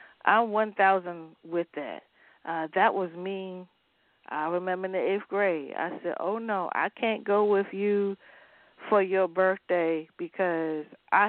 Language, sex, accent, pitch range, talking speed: English, female, American, 170-225 Hz, 155 wpm